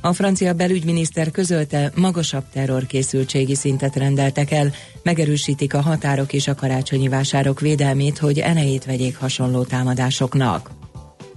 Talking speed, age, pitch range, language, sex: 115 wpm, 40-59, 135-160 Hz, Hungarian, female